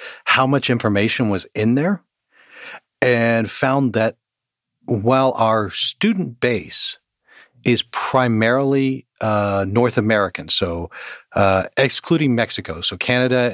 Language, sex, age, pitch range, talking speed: English, male, 40-59, 105-125 Hz, 105 wpm